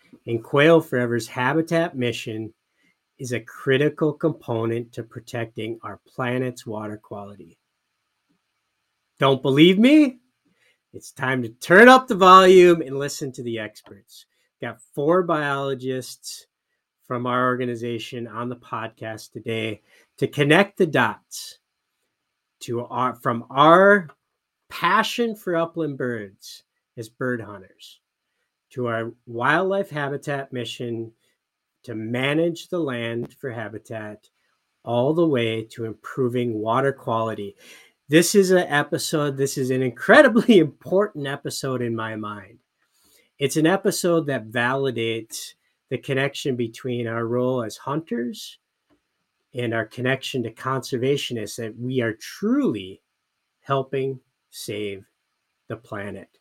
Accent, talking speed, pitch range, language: American, 120 wpm, 115-160 Hz, English